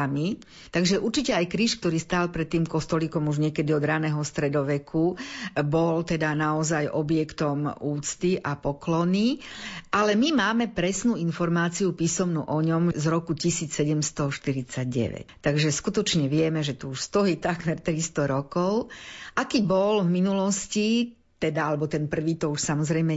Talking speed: 135 wpm